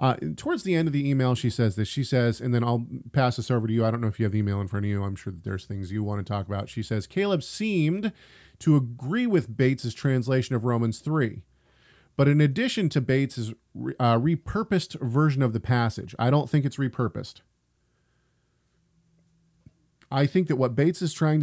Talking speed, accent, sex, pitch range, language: 220 wpm, American, male, 115-145 Hz, English